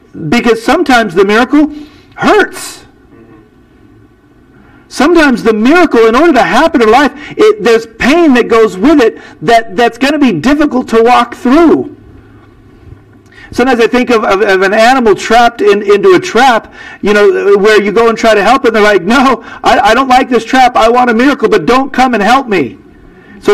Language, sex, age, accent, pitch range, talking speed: English, male, 50-69, American, 225-320 Hz, 190 wpm